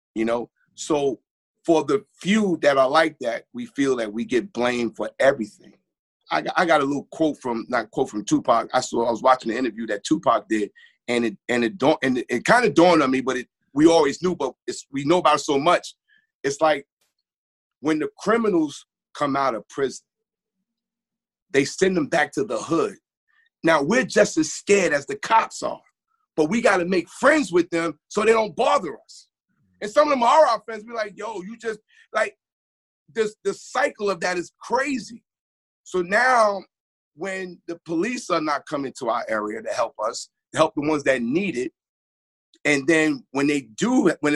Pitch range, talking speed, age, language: 150-245 Hz, 205 wpm, 30-49, English